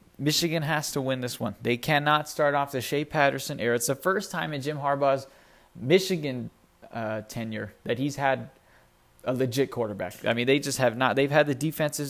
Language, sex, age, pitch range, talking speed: English, male, 20-39, 120-145 Hz, 200 wpm